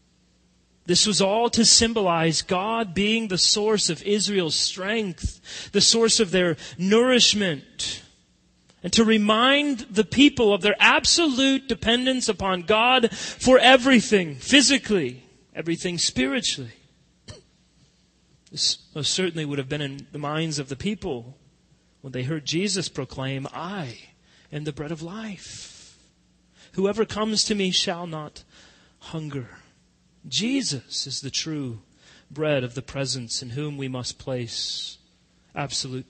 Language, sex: English, male